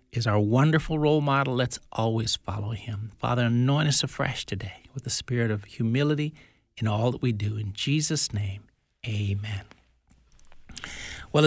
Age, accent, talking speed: 60-79, American, 150 wpm